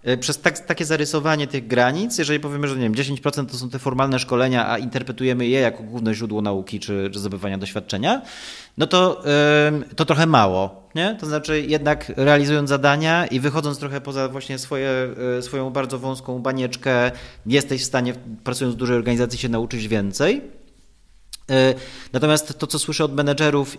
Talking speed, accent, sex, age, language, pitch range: 150 wpm, native, male, 30-49, Polish, 125-145 Hz